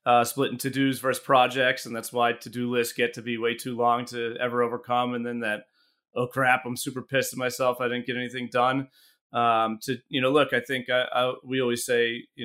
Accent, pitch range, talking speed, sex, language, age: American, 110-130 Hz, 215 wpm, male, English, 30-49